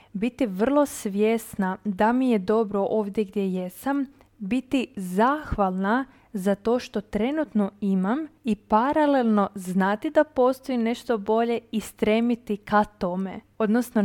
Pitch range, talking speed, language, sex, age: 200-250 Hz, 125 wpm, Croatian, female, 20-39